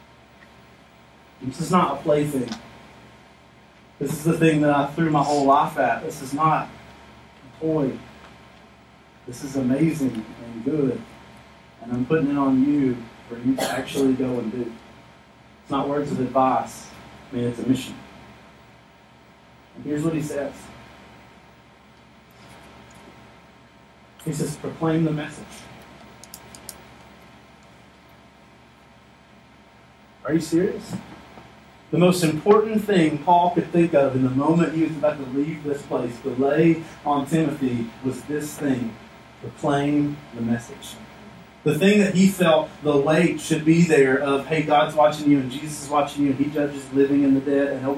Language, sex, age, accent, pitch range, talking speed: English, male, 30-49, American, 130-160 Hz, 150 wpm